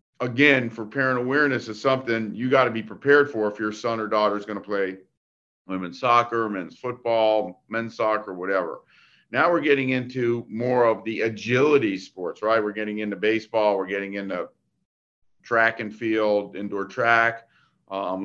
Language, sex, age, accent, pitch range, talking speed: English, male, 50-69, American, 105-125 Hz, 170 wpm